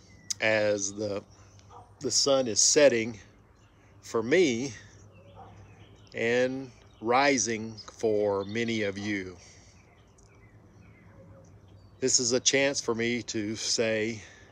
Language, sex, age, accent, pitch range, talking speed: English, male, 50-69, American, 100-110 Hz, 90 wpm